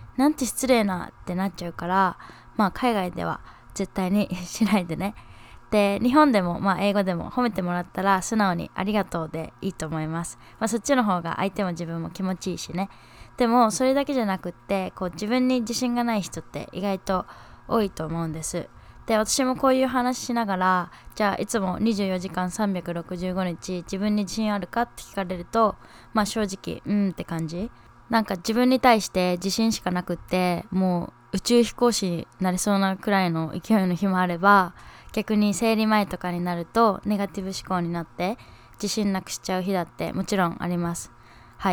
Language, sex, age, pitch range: Japanese, female, 20-39, 180-220 Hz